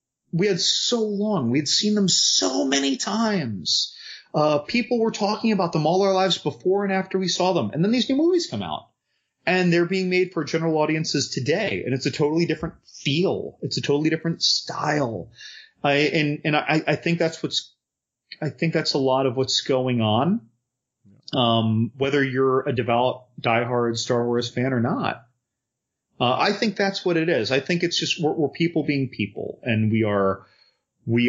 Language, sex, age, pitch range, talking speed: English, male, 30-49, 125-185 Hz, 190 wpm